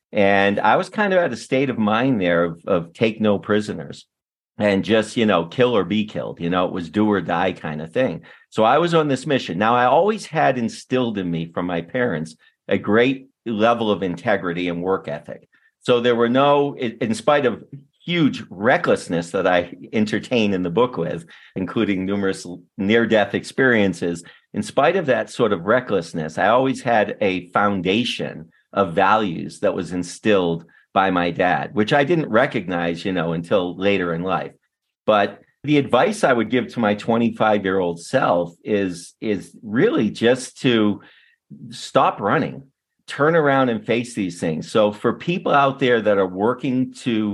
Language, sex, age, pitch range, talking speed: English, male, 50-69, 95-125 Hz, 175 wpm